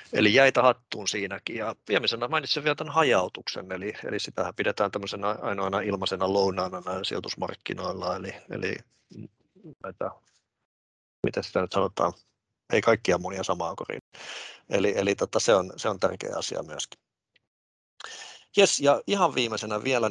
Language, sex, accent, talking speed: Finnish, male, native, 135 wpm